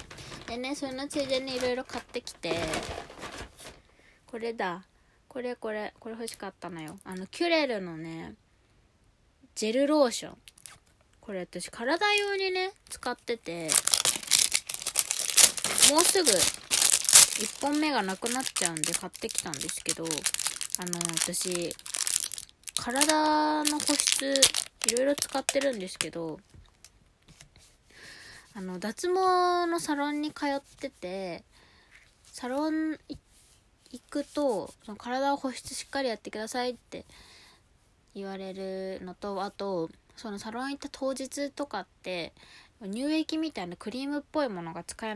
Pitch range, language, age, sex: 180-275 Hz, Japanese, 20-39, female